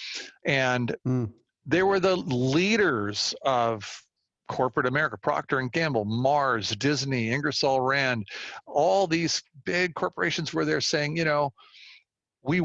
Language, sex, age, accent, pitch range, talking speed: English, male, 50-69, American, 120-155 Hz, 120 wpm